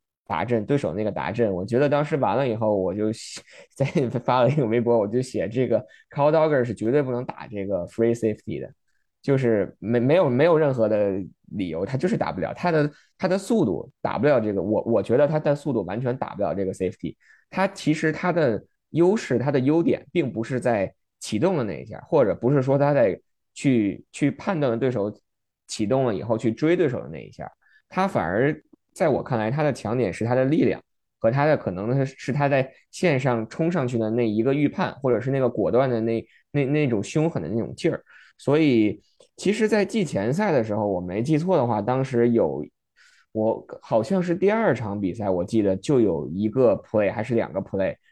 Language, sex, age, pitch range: Chinese, male, 20-39, 105-145 Hz